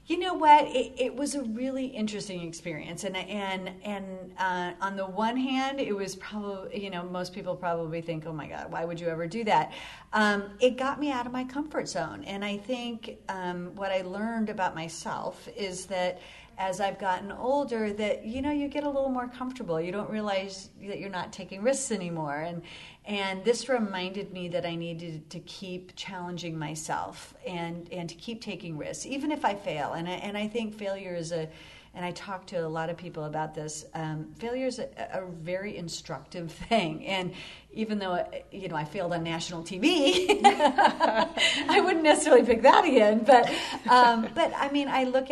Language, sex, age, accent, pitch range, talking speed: English, female, 40-59, American, 170-235 Hz, 195 wpm